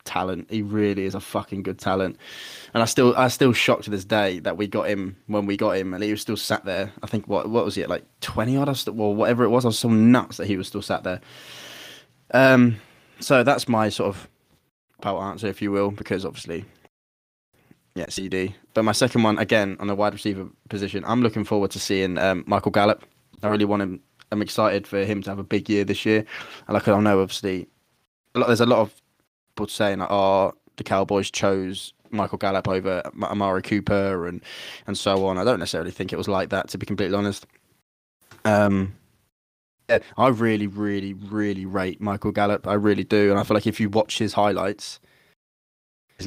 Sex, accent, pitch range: male, British, 95-110 Hz